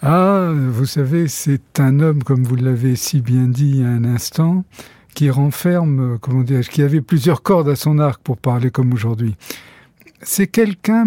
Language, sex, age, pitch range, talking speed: French, male, 60-79, 145-195 Hz, 175 wpm